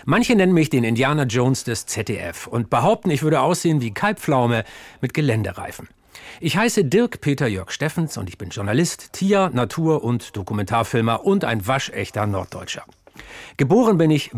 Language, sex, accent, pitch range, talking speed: German, male, German, 115-165 Hz, 145 wpm